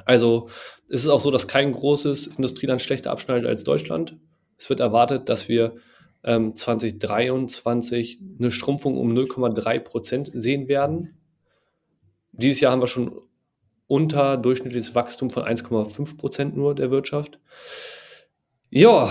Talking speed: 120 wpm